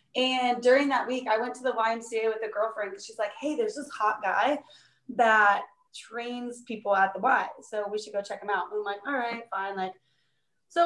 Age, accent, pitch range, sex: 20-39, American, 205-255 Hz, female